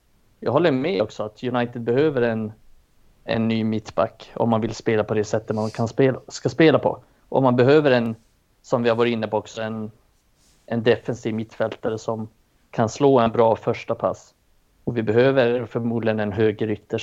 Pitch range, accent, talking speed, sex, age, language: 115-135 Hz, native, 185 wpm, male, 30-49, Swedish